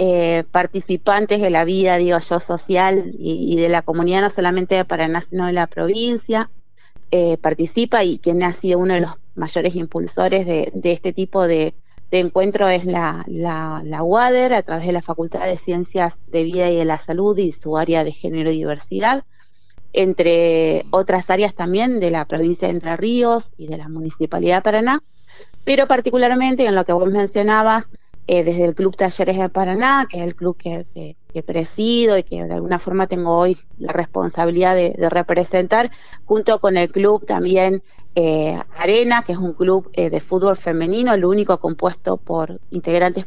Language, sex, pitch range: Spanish, female, 170-195 Hz